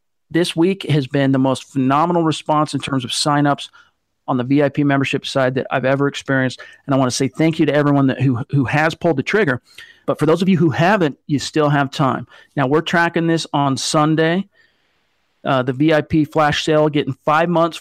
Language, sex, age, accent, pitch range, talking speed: English, male, 40-59, American, 135-160 Hz, 210 wpm